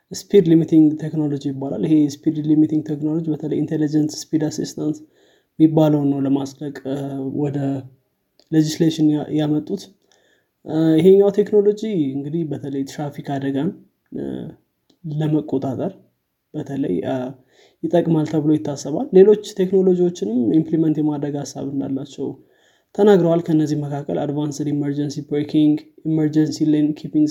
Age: 20-39